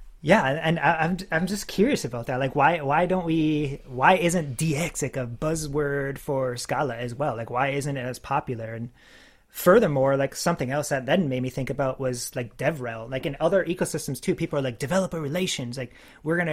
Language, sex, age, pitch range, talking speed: English, male, 30-49, 130-160 Hz, 205 wpm